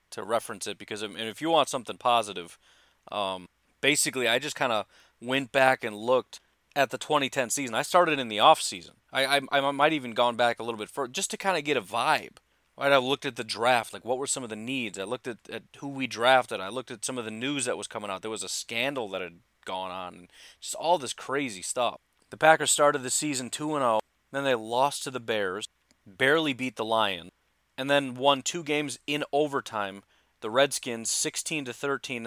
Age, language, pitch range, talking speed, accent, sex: 30-49, English, 110-150 Hz, 220 wpm, American, male